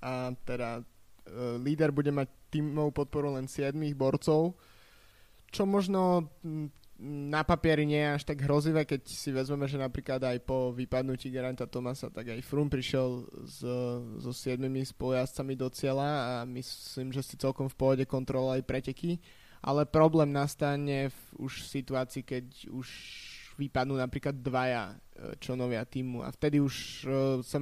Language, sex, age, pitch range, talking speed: Slovak, male, 20-39, 130-145 Hz, 145 wpm